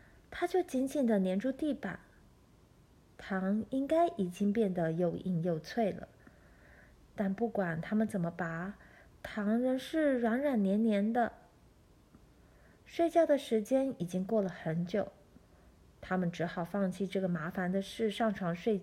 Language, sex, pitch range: Chinese, female, 195-270 Hz